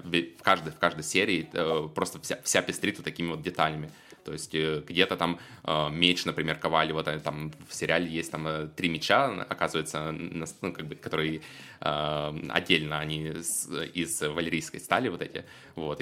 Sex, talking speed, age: male, 175 wpm, 20-39